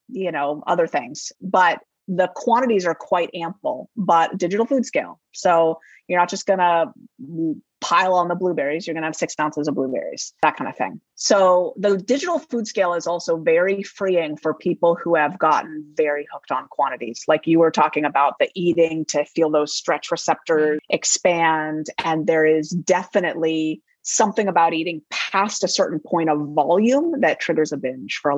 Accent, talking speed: American, 180 wpm